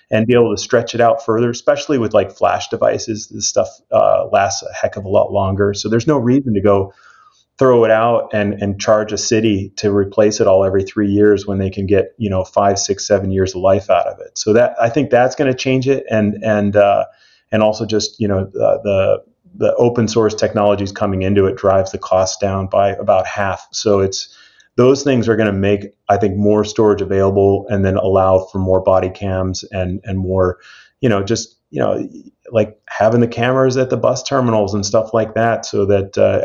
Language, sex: English, male